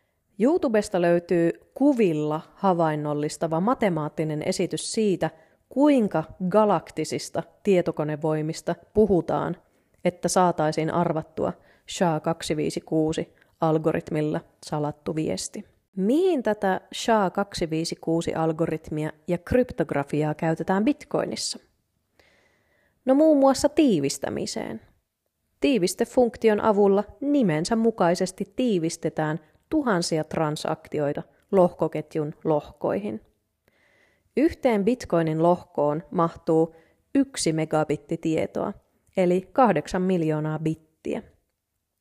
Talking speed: 65 wpm